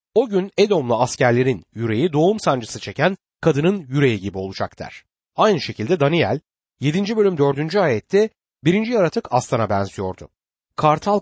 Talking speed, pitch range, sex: 135 wpm, 110-185 Hz, male